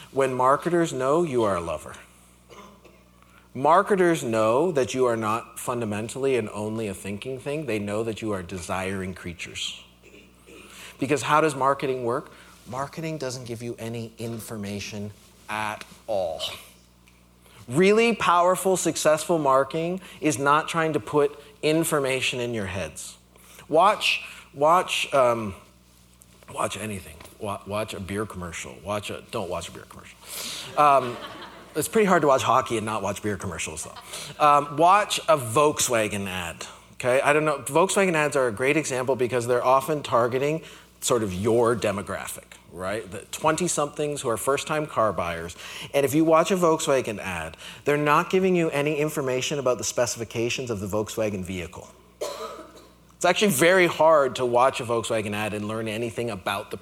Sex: male